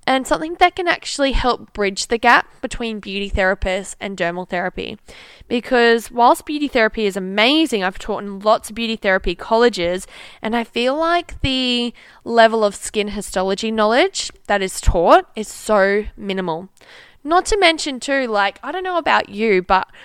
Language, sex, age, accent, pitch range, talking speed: English, female, 10-29, Australian, 195-260 Hz, 170 wpm